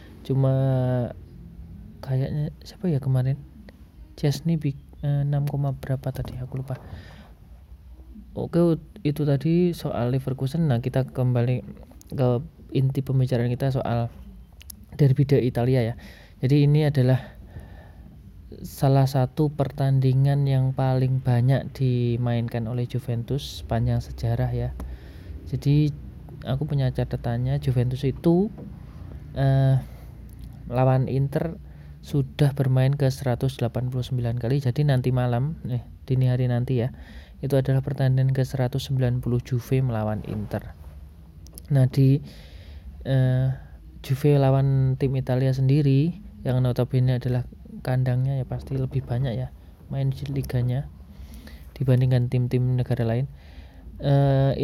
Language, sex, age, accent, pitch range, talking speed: Indonesian, male, 20-39, native, 115-135 Hz, 110 wpm